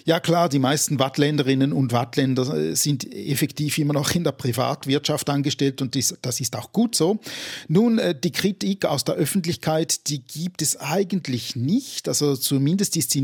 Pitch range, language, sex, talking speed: 135-170 Hz, German, male, 165 wpm